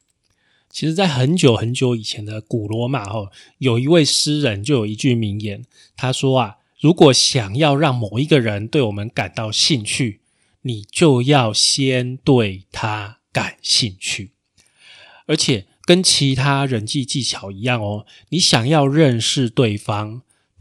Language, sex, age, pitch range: Chinese, male, 20-39, 110-145 Hz